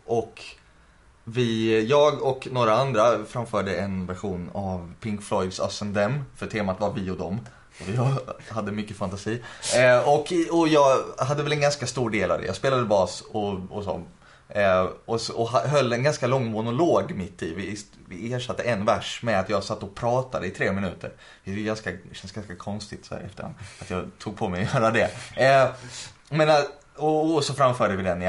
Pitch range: 100-125 Hz